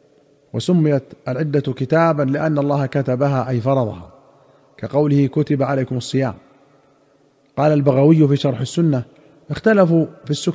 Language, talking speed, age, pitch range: Arabic, 110 wpm, 40-59, 135-160 Hz